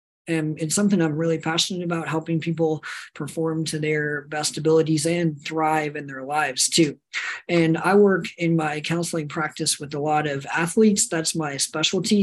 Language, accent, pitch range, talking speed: English, American, 155-175 Hz, 170 wpm